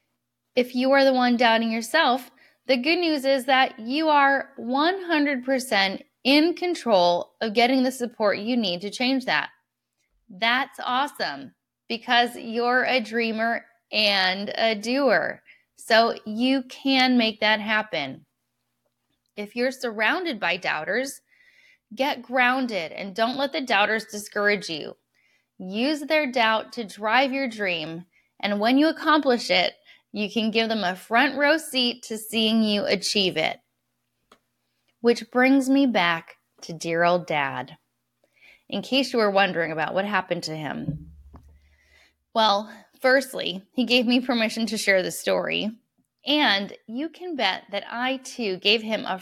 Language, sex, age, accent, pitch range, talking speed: English, female, 10-29, American, 195-260 Hz, 145 wpm